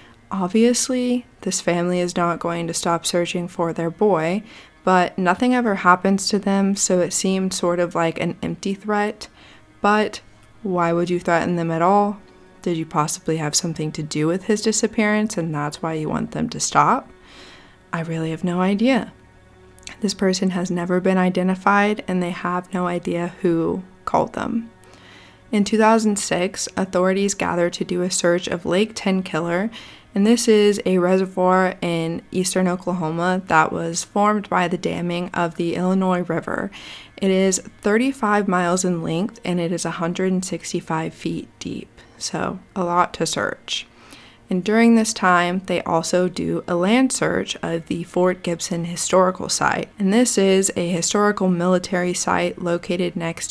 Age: 20-39